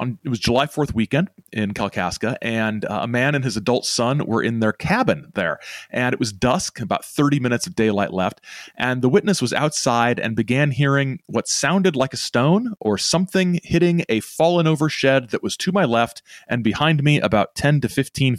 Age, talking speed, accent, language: 30-49, 200 wpm, American, English